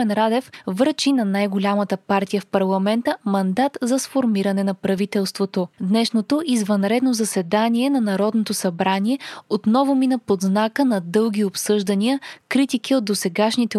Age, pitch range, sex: 20-39, 200-255 Hz, female